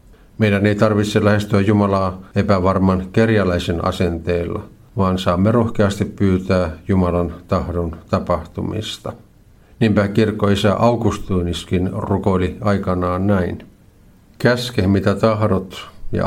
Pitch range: 95-110 Hz